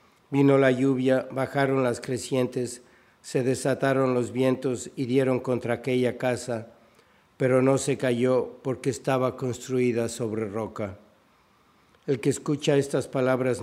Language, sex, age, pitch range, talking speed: Spanish, male, 60-79, 125-135 Hz, 130 wpm